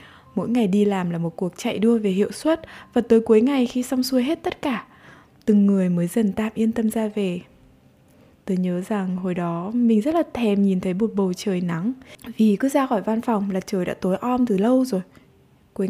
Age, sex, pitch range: 20-39, female, 200-250 Hz